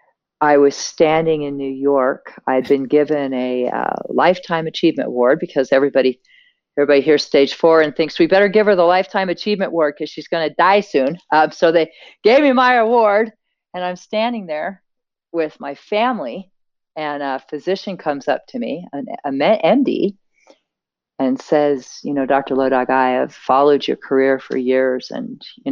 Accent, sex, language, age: American, female, English, 40-59